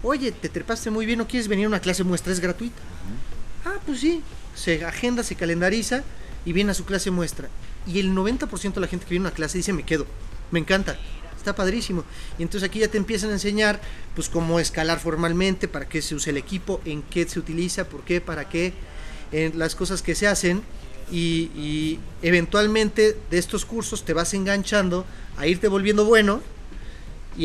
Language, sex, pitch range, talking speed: Spanish, male, 165-210 Hz, 200 wpm